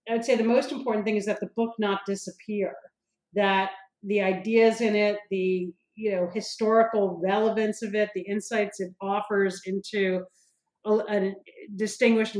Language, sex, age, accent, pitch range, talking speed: English, female, 40-59, American, 195-220 Hz, 155 wpm